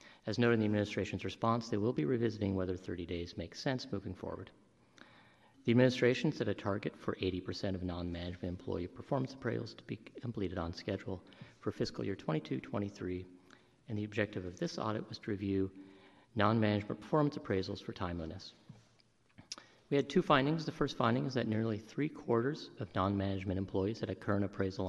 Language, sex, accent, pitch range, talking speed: English, male, American, 95-120 Hz, 170 wpm